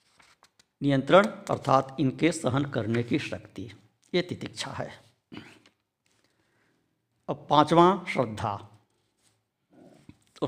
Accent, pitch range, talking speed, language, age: native, 110-160 Hz, 80 wpm, Hindi, 60-79